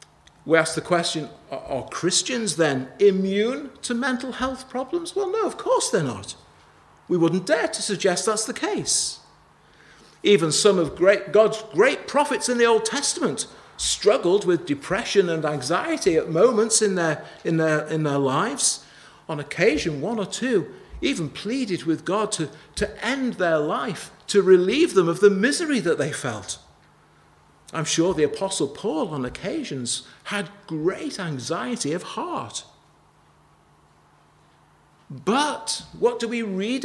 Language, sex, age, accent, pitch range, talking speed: English, male, 50-69, British, 170-250 Hz, 140 wpm